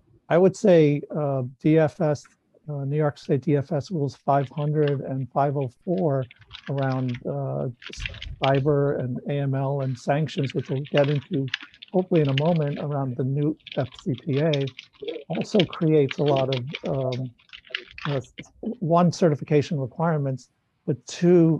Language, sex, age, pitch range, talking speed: English, male, 60-79, 135-160 Hz, 120 wpm